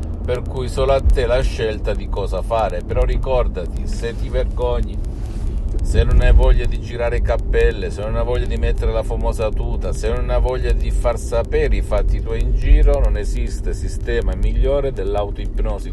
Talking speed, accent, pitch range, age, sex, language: 180 wpm, native, 85-115 Hz, 50-69, male, Italian